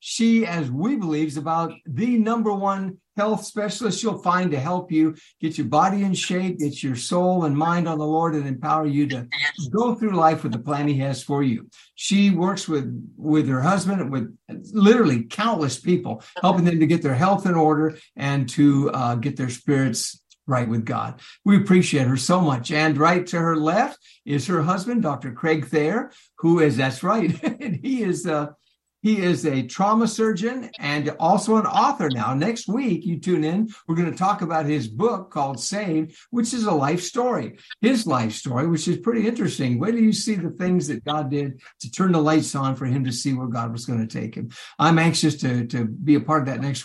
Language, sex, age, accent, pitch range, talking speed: English, male, 60-79, American, 145-200 Hz, 210 wpm